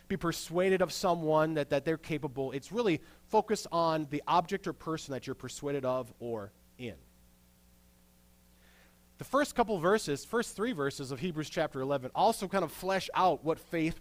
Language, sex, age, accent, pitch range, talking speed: English, male, 30-49, American, 115-190 Hz, 170 wpm